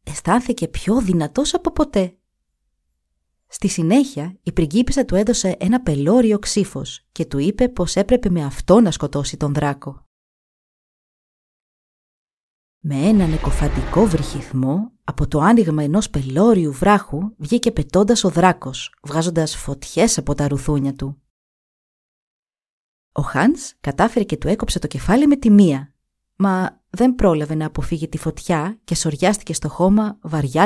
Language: Greek